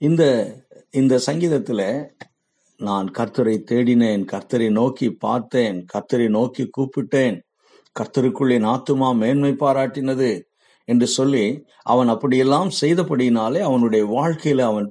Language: Tamil